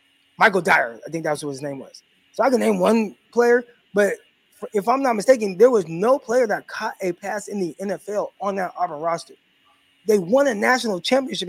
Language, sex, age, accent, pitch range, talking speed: English, male, 20-39, American, 160-215 Hz, 210 wpm